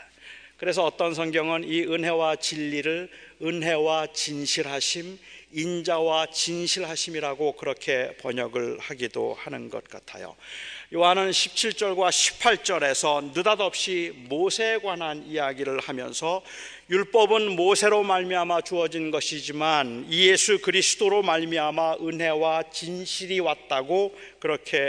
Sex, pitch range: male, 165-225 Hz